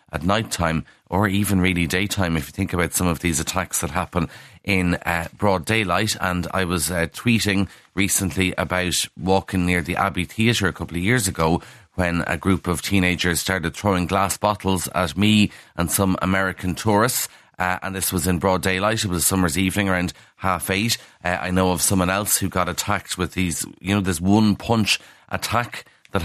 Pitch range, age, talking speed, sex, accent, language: 90-105 Hz, 30-49, 195 wpm, male, Irish, English